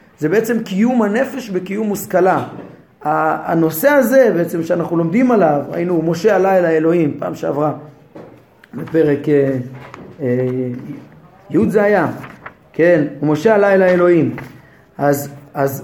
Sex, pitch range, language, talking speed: male, 165-220 Hz, Hebrew, 120 wpm